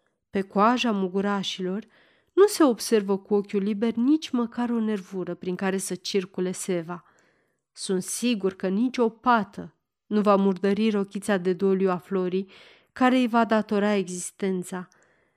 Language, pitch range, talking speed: Romanian, 190-240 Hz, 145 wpm